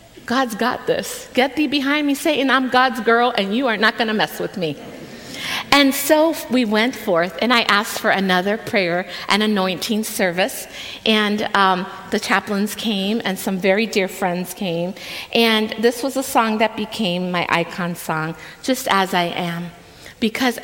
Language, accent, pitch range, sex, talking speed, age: English, American, 180-230 Hz, female, 175 wpm, 50-69